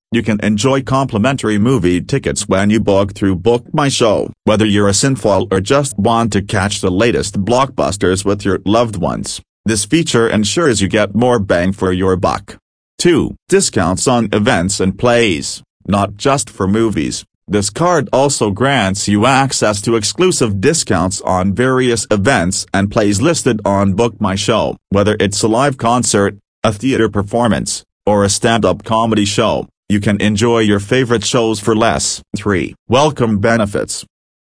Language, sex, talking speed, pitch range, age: English, male, 160 wpm, 100-120 Hz, 40-59